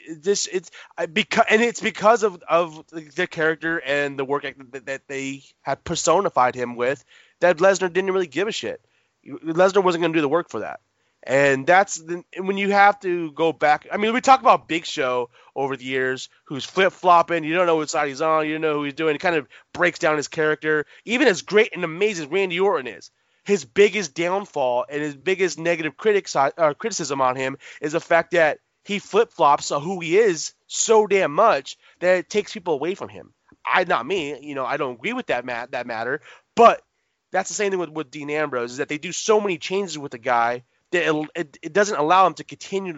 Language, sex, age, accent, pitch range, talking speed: English, male, 20-39, American, 145-195 Hz, 225 wpm